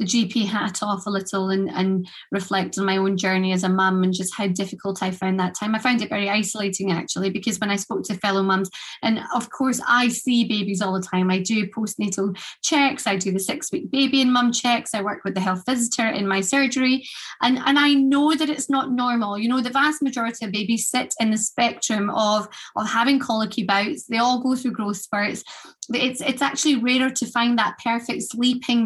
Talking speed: 220 wpm